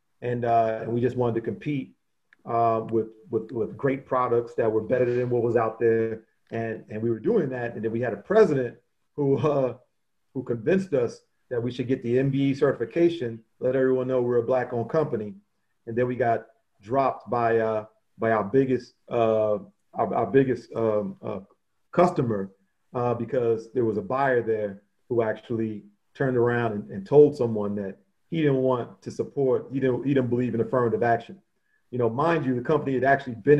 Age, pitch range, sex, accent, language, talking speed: 40-59, 115-135 Hz, male, American, English, 195 wpm